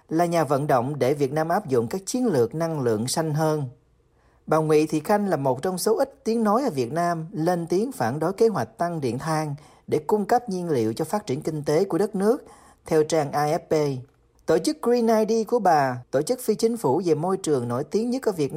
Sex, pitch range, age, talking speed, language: male, 140-200 Hz, 40-59, 240 wpm, Vietnamese